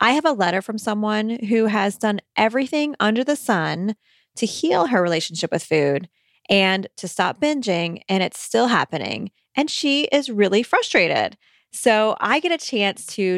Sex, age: female, 20-39